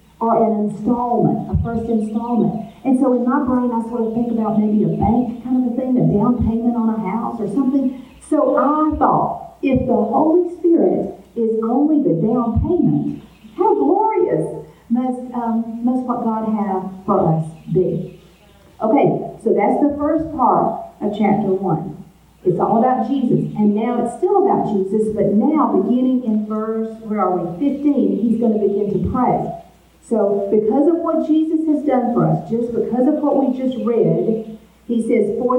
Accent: American